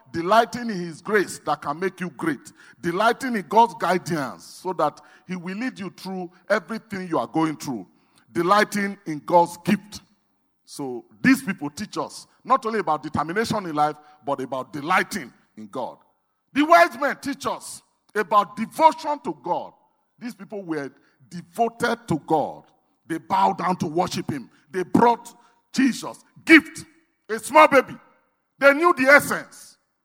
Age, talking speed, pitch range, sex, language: 50-69, 155 wpm, 155-230 Hz, male, English